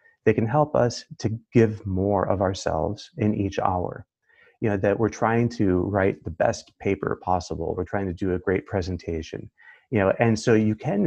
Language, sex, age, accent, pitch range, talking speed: English, male, 30-49, American, 95-120 Hz, 195 wpm